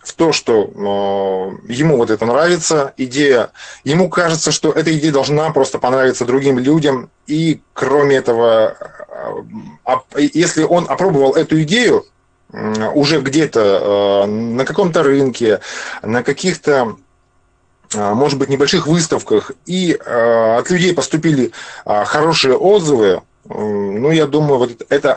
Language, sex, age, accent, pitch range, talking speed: Russian, male, 20-39, native, 110-160 Hz, 110 wpm